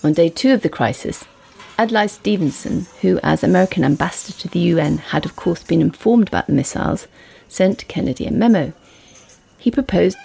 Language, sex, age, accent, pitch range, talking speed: English, female, 40-59, British, 180-240 Hz, 170 wpm